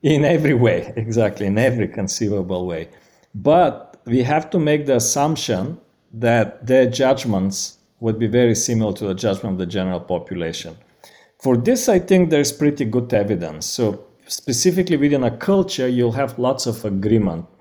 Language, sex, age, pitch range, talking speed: English, male, 50-69, 105-135 Hz, 160 wpm